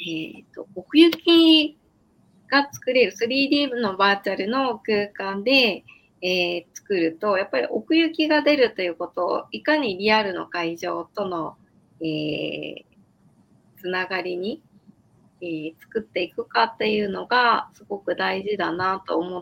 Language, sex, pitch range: Japanese, female, 175-245 Hz